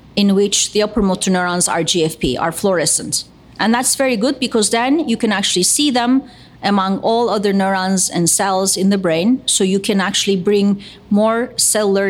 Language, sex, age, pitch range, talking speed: English, female, 40-59, 175-220 Hz, 185 wpm